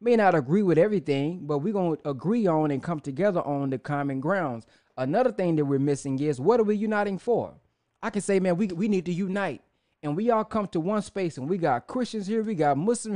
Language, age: English, 20-39